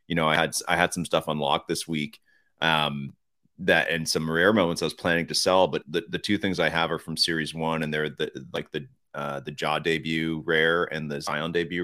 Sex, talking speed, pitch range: male, 240 wpm, 75-90 Hz